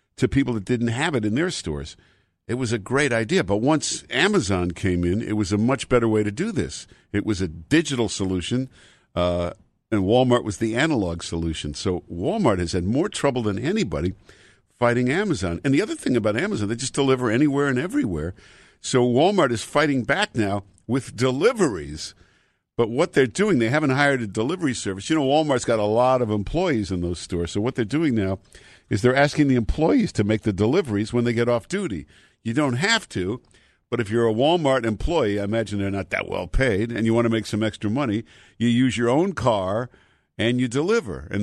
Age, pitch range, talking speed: 50-69, 100-125 Hz, 210 wpm